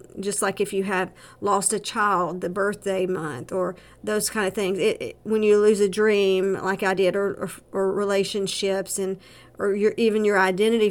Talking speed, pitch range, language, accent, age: 200 wpm, 190-225 Hz, English, American, 50-69